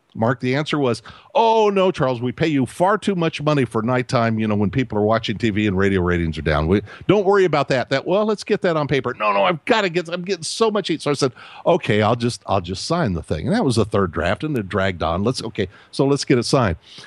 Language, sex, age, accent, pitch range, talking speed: English, male, 50-69, American, 105-150 Hz, 280 wpm